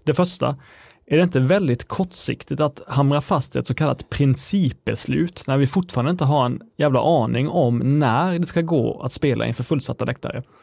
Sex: male